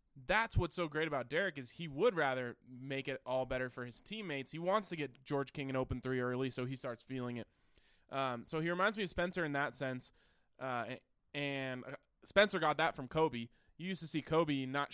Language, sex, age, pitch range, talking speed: English, male, 20-39, 125-160 Hz, 220 wpm